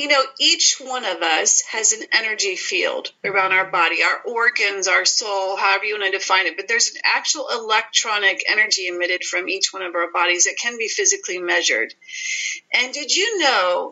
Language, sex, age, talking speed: English, female, 40-59, 195 wpm